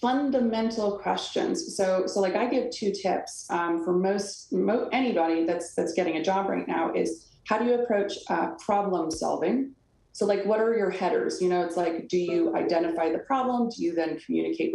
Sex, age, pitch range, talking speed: female, 20-39, 175-230 Hz, 195 wpm